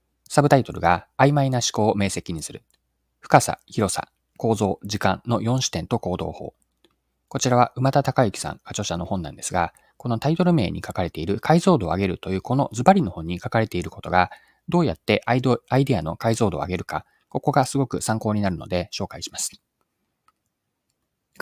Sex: male